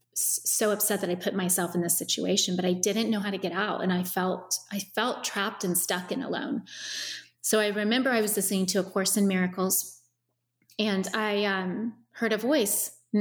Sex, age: female, 30-49